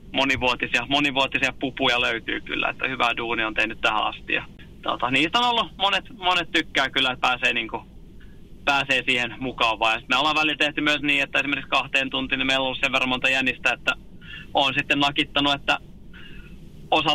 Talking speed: 185 wpm